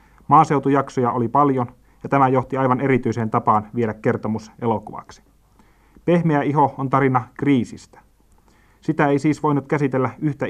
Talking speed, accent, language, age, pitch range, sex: 130 wpm, native, Finnish, 30-49, 120-145 Hz, male